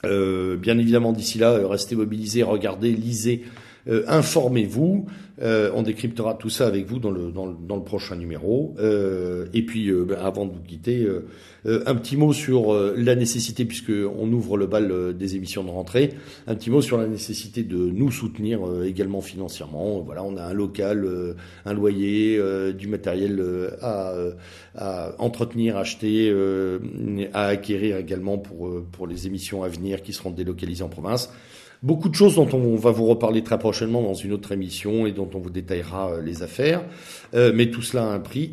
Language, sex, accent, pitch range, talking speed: French, male, French, 95-120 Hz, 170 wpm